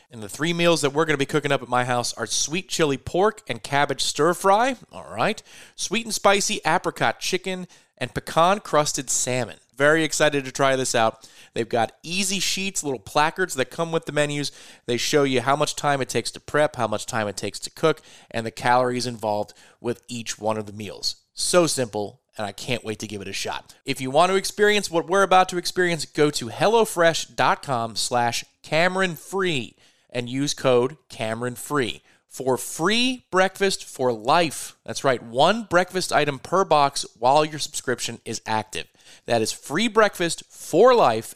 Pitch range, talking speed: 120-170 Hz, 185 wpm